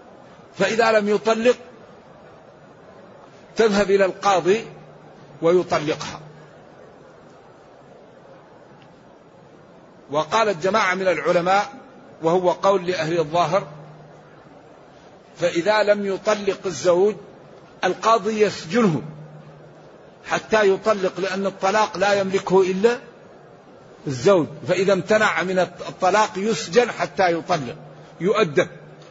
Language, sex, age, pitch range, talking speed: Arabic, male, 50-69, 180-215 Hz, 75 wpm